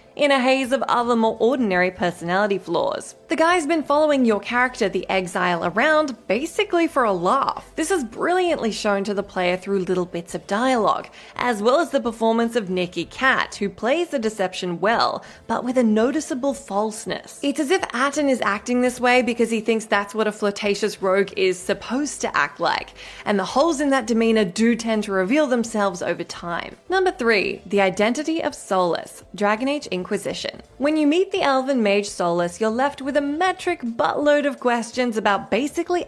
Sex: female